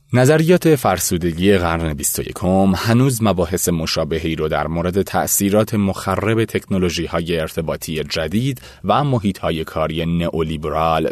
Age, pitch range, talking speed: 30-49, 85-120 Hz, 110 wpm